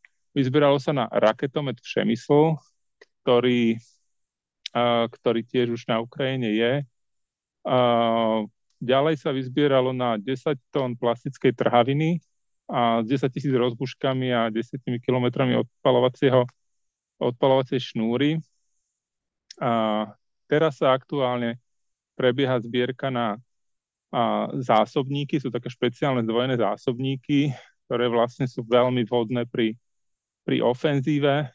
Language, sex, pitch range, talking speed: Slovak, male, 120-135 Hz, 105 wpm